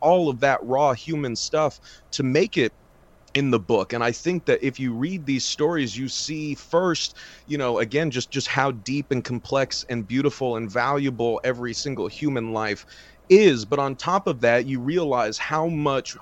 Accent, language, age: American, English, 30-49